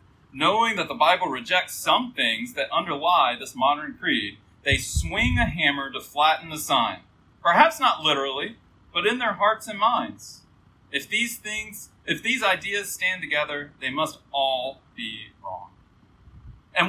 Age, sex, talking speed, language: 40-59, male, 155 wpm, English